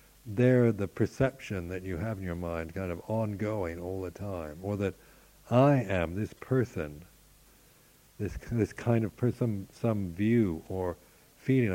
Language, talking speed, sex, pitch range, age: English, 155 wpm, male, 85-105 Hz, 60-79